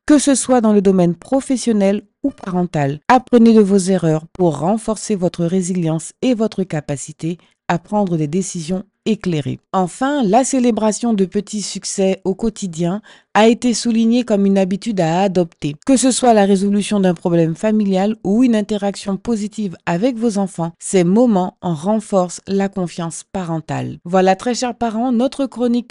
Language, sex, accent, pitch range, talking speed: French, female, French, 180-235 Hz, 160 wpm